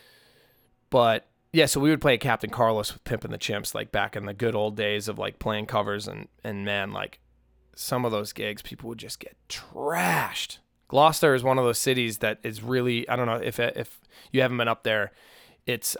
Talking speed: 215 wpm